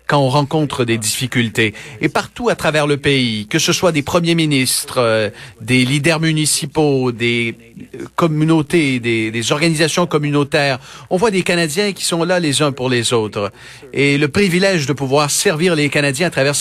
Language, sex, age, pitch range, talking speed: French, male, 40-59, 130-170 Hz, 175 wpm